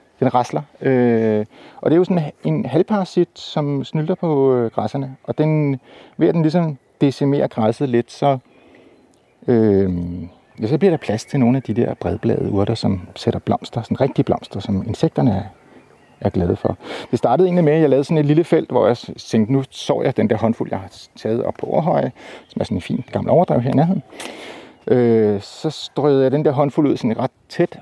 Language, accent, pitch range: Danish, native, 115-155 Hz